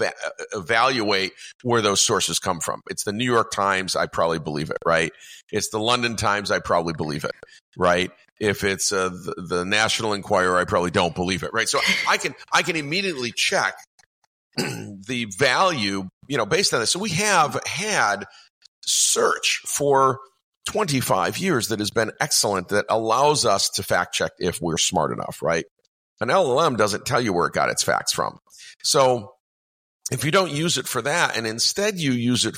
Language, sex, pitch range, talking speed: English, male, 95-130 Hz, 185 wpm